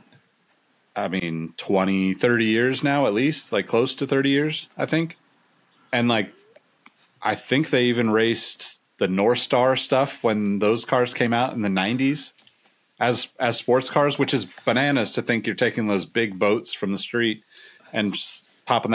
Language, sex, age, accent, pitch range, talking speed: English, male, 30-49, American, 100-130 Hz, 170 wpm